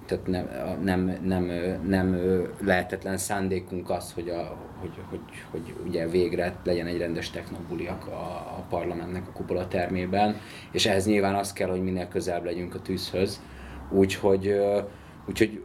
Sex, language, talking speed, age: male, Hungarian, 145 wpm, 30-49